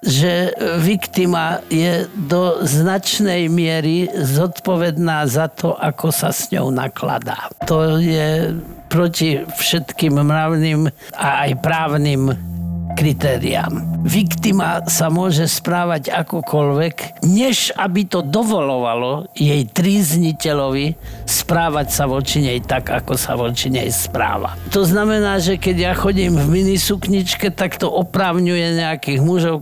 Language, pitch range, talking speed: Slovak, 140-185 Hz, 115 wpm